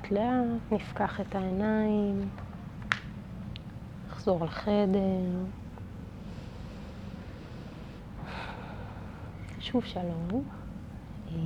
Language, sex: Hebrew, female